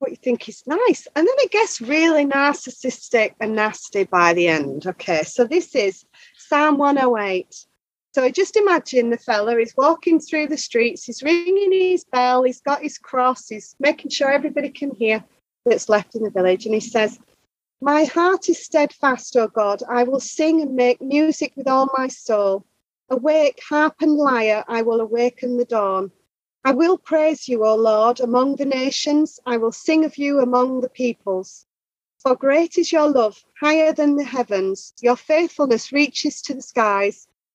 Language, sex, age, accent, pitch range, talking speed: English, female, 30-49, British, 230-295 Hz, 180 wpm